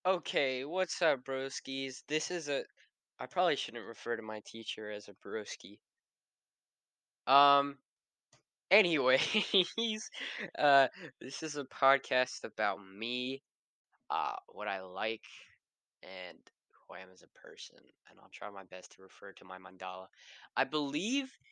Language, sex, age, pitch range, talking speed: English, male, 10-29, 115-150 Hz, 135 wpm